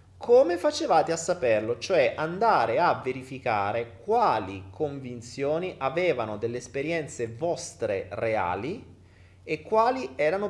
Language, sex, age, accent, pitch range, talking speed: Italian, male, 30-49, native, 115-190 Hz, 105 wpm